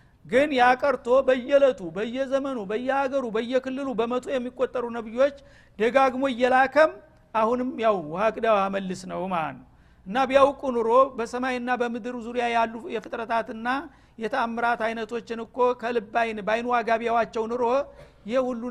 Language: Amharic